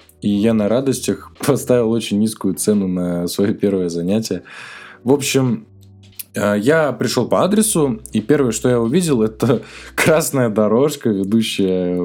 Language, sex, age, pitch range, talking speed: Russian, male, 20-39, 100-125 Hz, 135 wpm